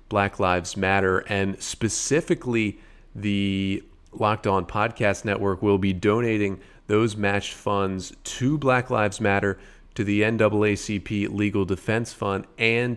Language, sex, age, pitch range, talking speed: English, male, 30-49, 95-110 Hz, 125 wpm